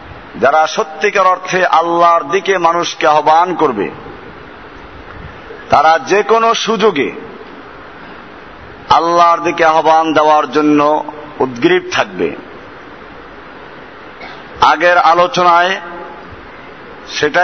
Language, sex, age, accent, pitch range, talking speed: Bengali, male, 50-69, native, 160-190 Hz, 45 wpm